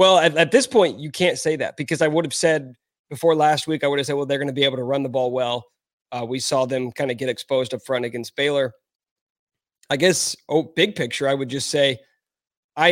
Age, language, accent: 30-49, English, American